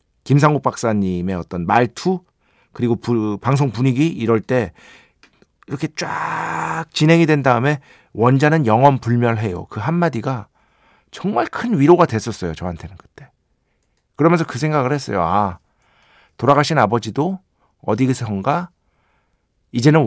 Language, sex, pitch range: Korean, male, 105-155 Hz